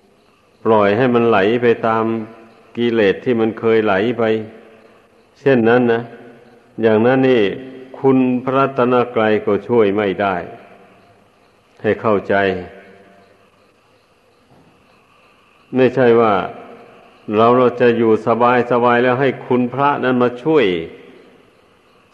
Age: 60-79